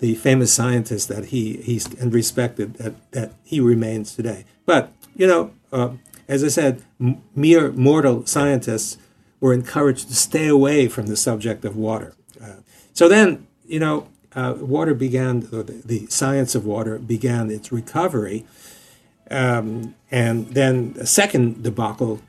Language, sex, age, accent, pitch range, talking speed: English, male, 50-69, American, 110-130 Hz, 155 wpm